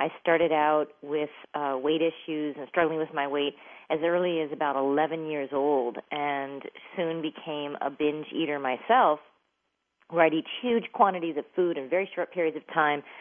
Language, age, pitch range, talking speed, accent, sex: English, 40-59, 145-165 Hz, 175 wpm, American, female